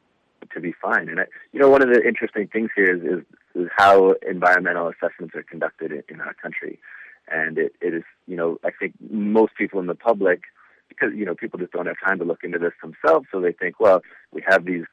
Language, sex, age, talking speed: English, male, 30-49, 235 wpm